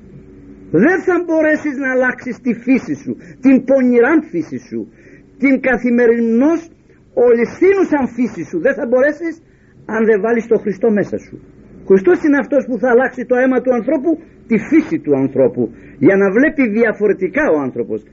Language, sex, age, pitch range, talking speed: Greek, male, 50-69, 195-270 Hz, 155 wpm